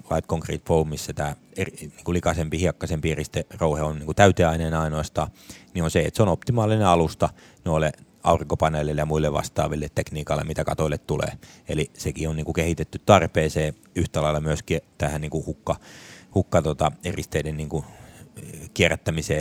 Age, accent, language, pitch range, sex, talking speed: 30-49, native, Finnish, 75-85 Hz, male, 145 wpm